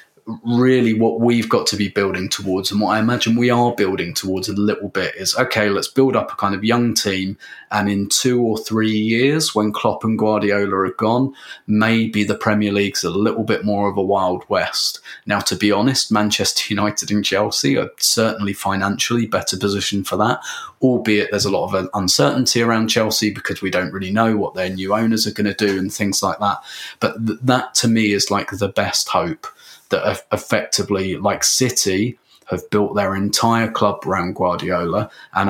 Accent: British